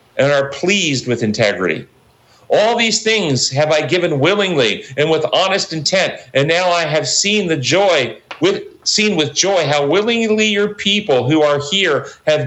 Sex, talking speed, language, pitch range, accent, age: male, 170 wpm, English, 145-205 Hz, American, 50-69